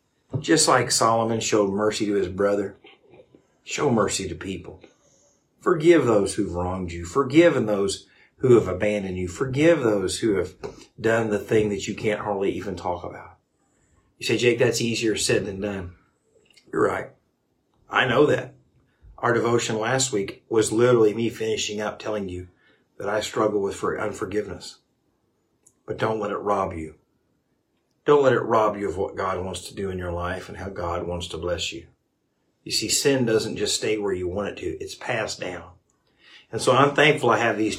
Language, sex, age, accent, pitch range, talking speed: English, male, 50-69, American, 100-130 Hz, 180 wpm